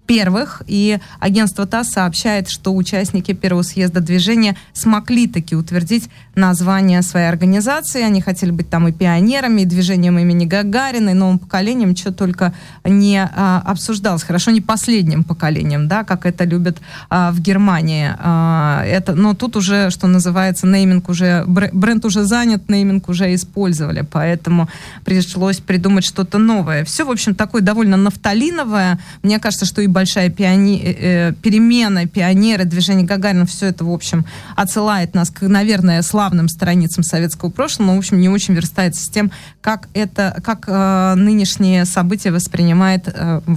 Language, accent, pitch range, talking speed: Russian, native, 175-200 Hz, 145 wpm